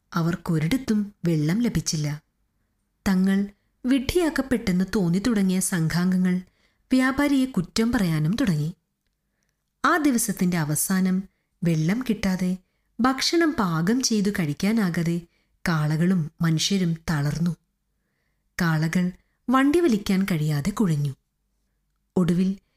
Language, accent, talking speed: Malayalam, native, 80 wpm